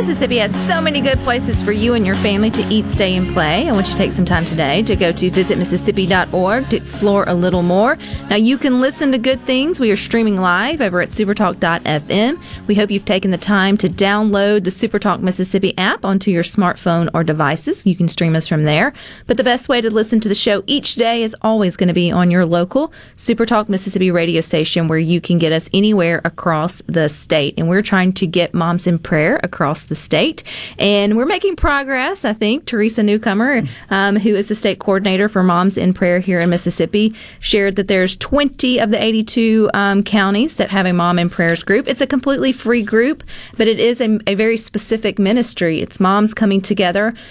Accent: American